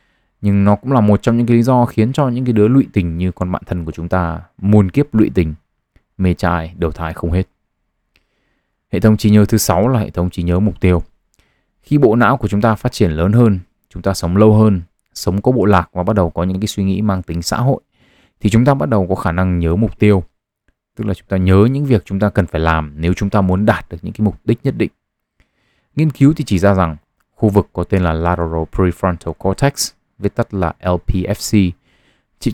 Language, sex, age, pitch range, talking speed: Vietnamese, male, 20-39, 90-110 Hz, 240 wpm